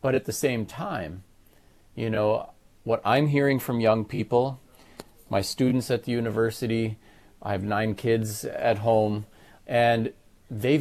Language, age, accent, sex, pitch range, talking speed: English, 40-59, American, male, 95-115 Hz, 145 wpm